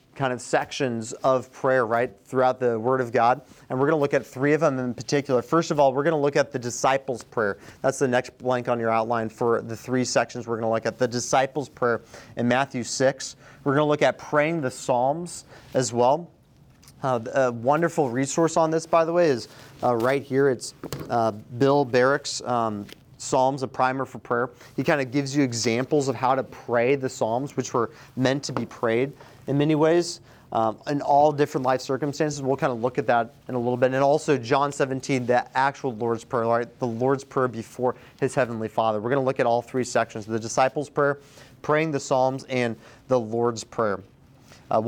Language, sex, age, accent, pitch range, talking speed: English, male, 30-49, American, 120-145 Hz, 215 wpm